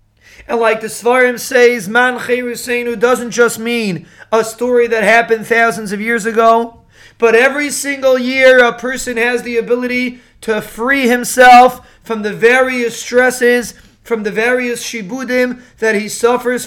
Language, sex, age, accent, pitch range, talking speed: English, male, 30-49, American, 225-255 Hz, 140 wpm